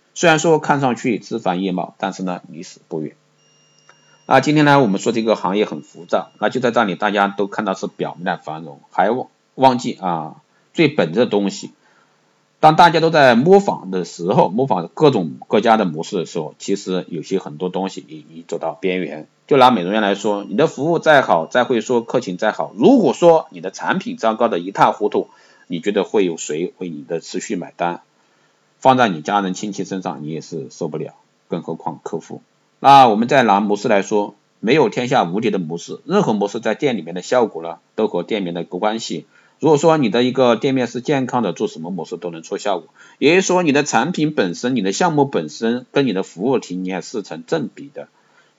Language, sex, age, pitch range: Chinese, male, 50-69, 95-130 Hz